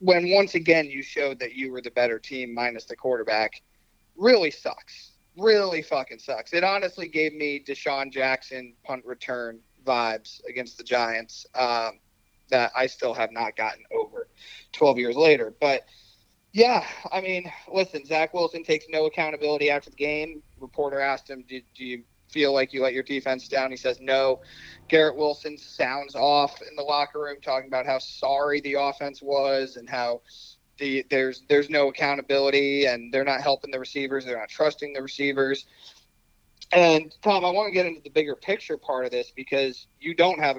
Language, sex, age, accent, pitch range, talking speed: English, male, 30-49, American, 130-155 Hz, 180 wpm